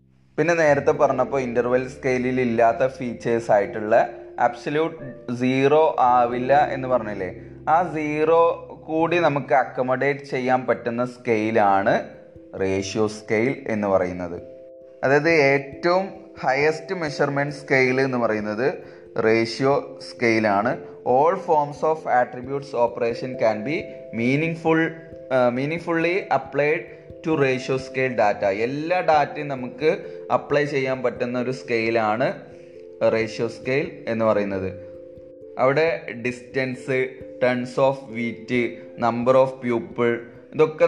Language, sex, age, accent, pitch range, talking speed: Malayalam, male, 20-39, native, 115-140 Hz, 105 wpm